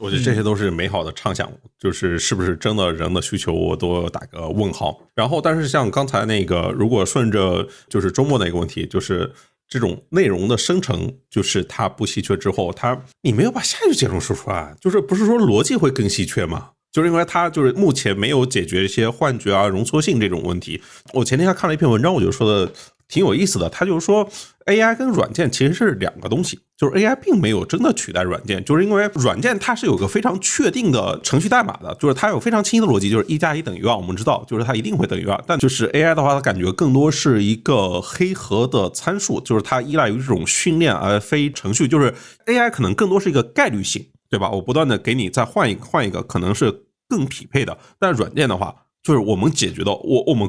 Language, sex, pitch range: Chinese, male, 100-165 Hz